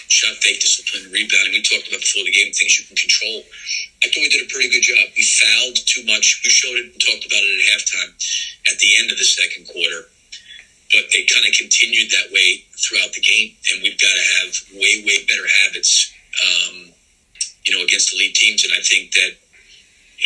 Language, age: English, 50-69